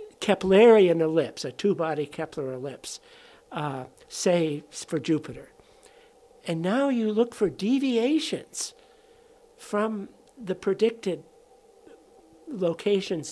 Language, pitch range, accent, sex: English, 175-270 Hz, American, male